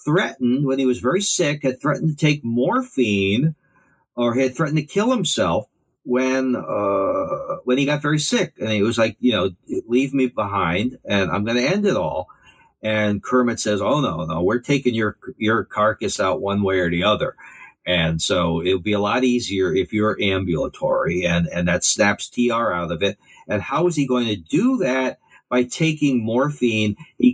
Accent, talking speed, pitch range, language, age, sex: American, 190 wpm, 100-135 Hz, English, 50-69, male